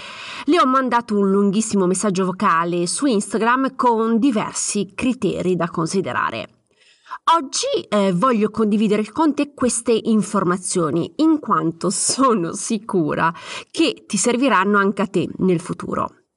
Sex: female